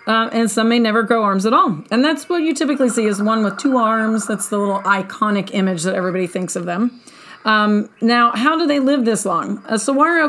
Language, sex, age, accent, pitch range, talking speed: English, female, 40-59, American, 200-250 Hz, 235 wpm